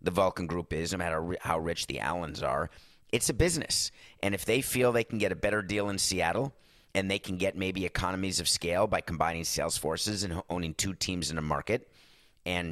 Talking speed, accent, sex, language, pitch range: 215 wpm, American, male, English, 95-115 Hz